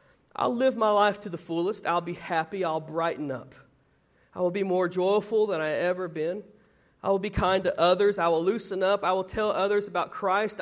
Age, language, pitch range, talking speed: 40-59, English, 165-215 Hz, 215 wpm